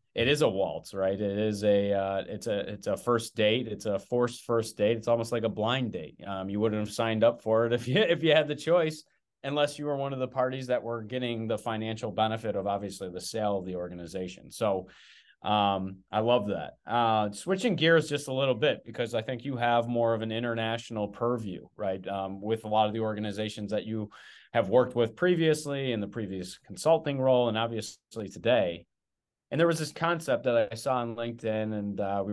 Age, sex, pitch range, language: 30-49, male, 100-120 Hz, English